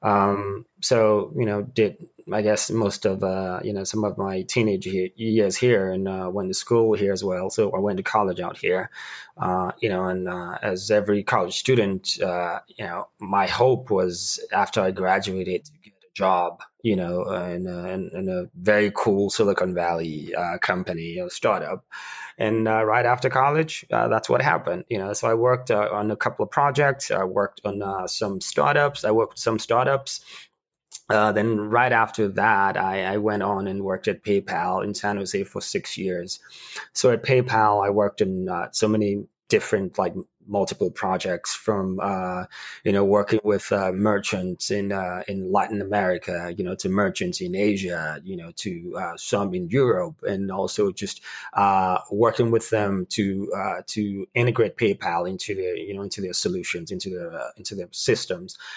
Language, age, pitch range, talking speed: English, 20-39, 95-115 Hz, 190 wpm